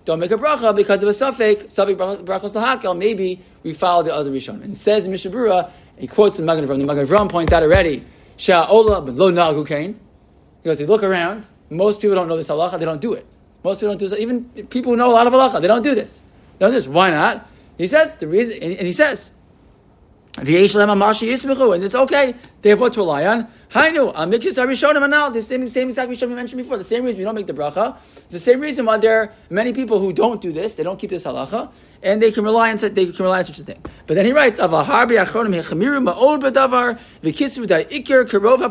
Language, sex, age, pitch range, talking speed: English, male, 20-39, 170-235 Hz, 210 wpm